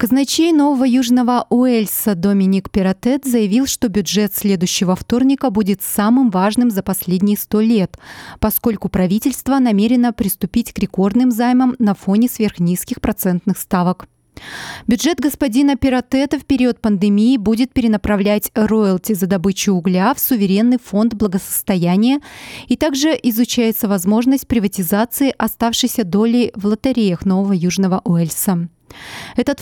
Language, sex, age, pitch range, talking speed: Russian, female, 30-49, 195-250 Hz, 120 wpm